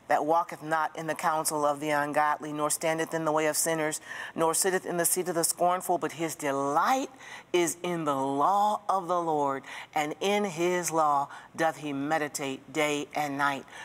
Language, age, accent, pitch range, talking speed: English, 40-59, American, 140-175 Hz, 190 wpm